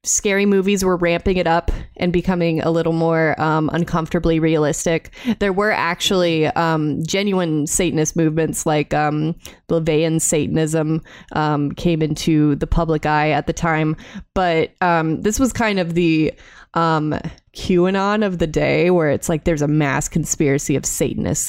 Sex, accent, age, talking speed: female, American, 20-39, 150 wpm